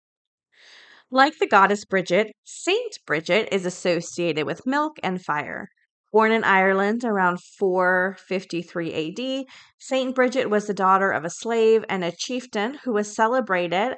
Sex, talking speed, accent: female, 135 wpm, American